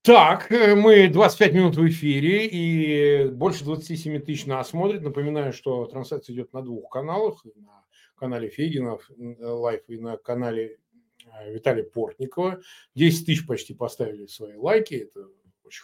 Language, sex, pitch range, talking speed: Russian, male, 130-215 Hz, 135 wpm